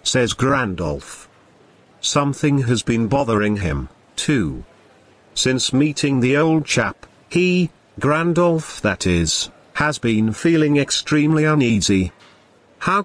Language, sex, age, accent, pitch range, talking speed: English, male, 50-69, British, 110-155 Hz, 105 wpm